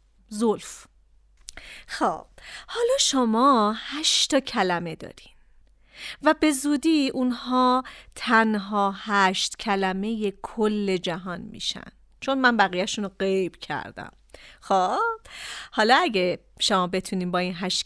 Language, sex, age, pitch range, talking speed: Persian, female, 40-59, 190-265 Hz, 100 wpm